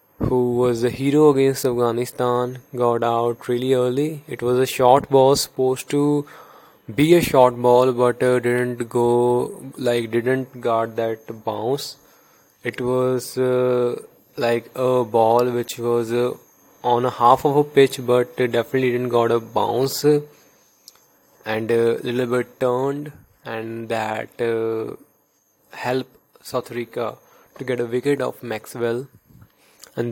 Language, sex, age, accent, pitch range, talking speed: English, male, 20-39, Indian, 115-130 Hz, 145 wpm